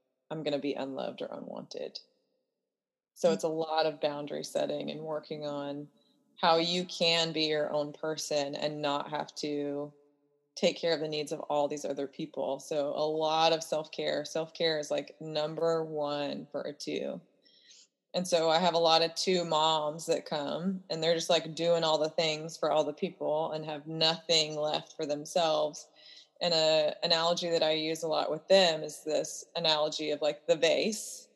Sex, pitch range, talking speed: female, 150-170 Hz, 185 wpm